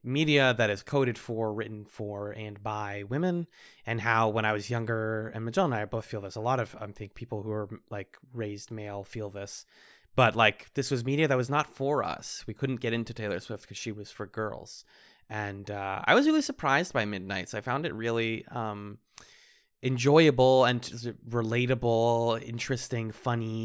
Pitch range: 105-130 Hz